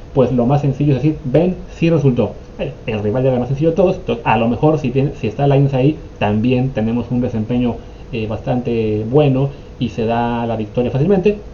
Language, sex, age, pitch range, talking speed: Spanish, male, 30-49, 120-155 Hz, 210 wpm